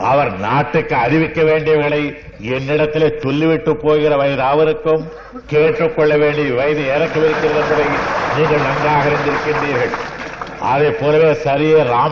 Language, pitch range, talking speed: Tamil, 150-155 Hz, 90 wpm